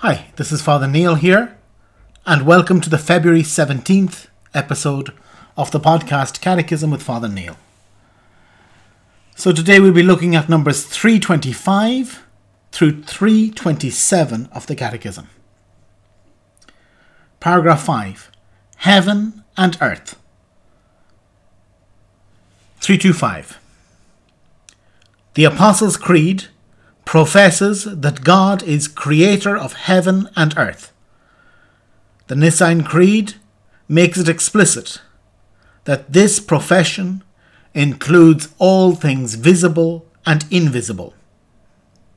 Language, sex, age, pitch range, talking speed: English, male, 50-69, 105-180 Hz, 95 wpm